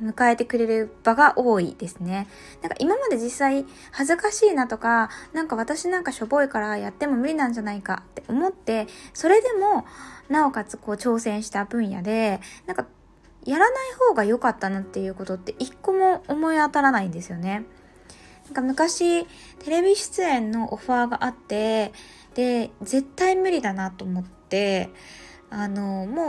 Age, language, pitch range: 20-39, Japanese, 210-305 Hz